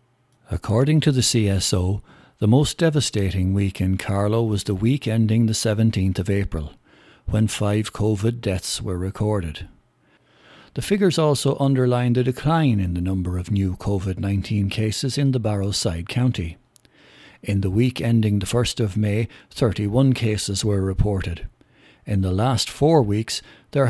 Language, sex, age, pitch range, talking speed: English, male, 60-79, 100-125 Hz, 150 wpm